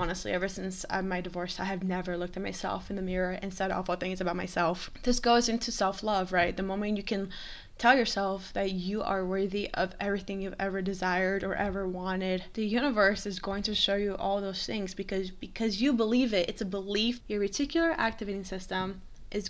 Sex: female